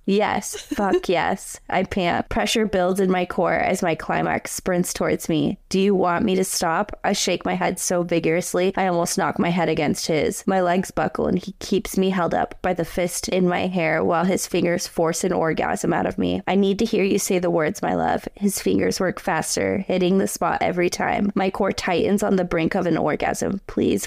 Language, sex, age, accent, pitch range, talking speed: English, female, 20-39, American, 170-195 Hz, 220 wpm